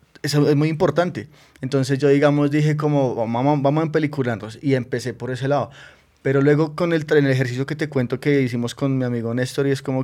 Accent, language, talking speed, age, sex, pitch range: Colombian, Spanish, 220 wpm, 20-39, male, 120-145 Hz